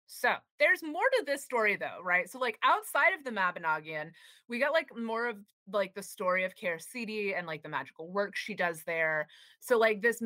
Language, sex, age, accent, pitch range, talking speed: English, female, 30-49, American, 175-230 Hz, 205 wpm